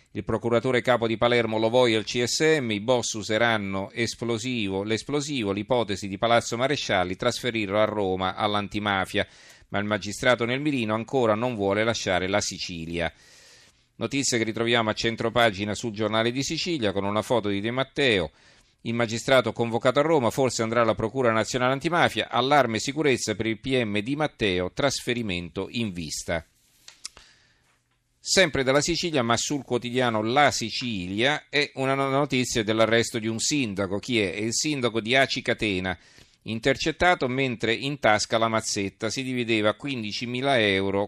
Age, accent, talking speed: 40-59, native, 150 wpm